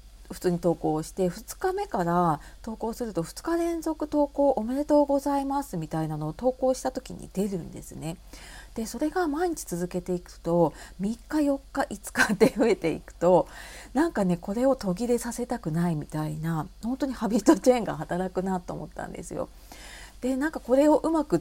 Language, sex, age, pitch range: Japanese, female, 40-59, 170-245 Hz